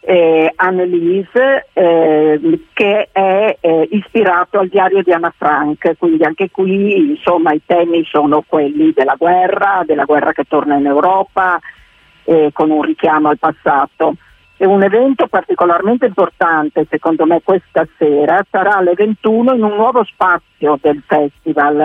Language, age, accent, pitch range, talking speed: Italian, 50-69, native, 160-195 Hz, 145 wpm